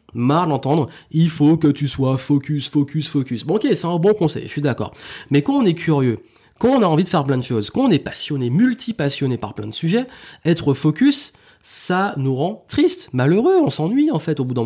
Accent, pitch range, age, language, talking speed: French, 130-175 Hz, 30-49, French, 230 wpm